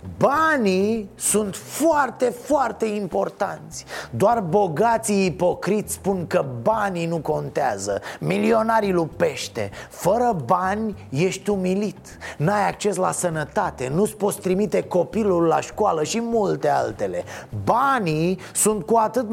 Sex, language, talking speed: male, Romanian, 110 wpm